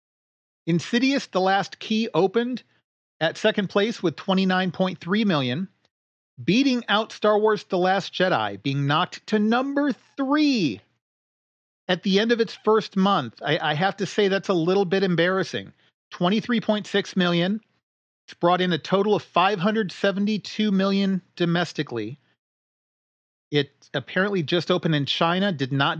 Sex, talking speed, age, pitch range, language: male, 135 wpm, 40-59, 145-200 Hz, English